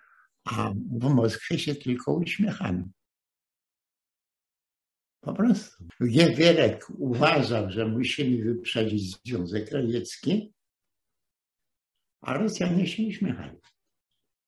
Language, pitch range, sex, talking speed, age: Polish, 105-150 Hz, male, 80 wpm, 60-79